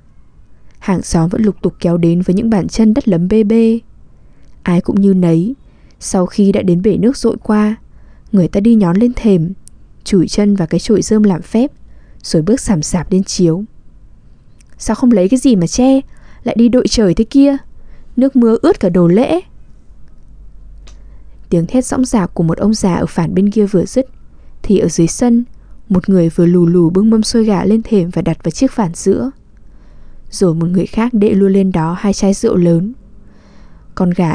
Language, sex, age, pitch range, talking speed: English, female, 10-29, 175-225 Hz, 200 wpm